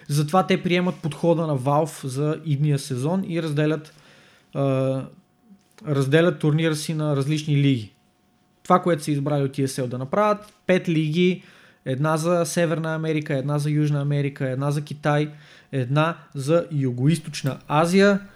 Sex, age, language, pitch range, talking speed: male, 20-39, Bulgarian, 140-170 Hz, 140 wpm